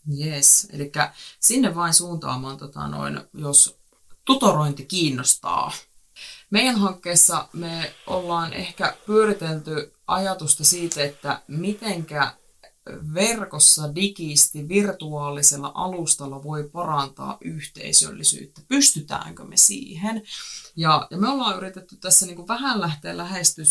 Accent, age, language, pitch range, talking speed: native, 20-39, Finnish, 145-180 Hz, 95 wpm